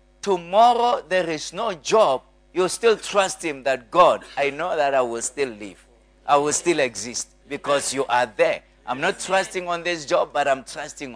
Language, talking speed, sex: English, 190 wpm, male